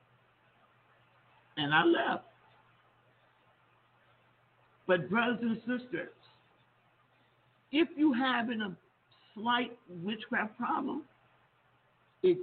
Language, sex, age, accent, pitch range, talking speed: English, male, 50-69, American, 180-260 Hz, 75 wpm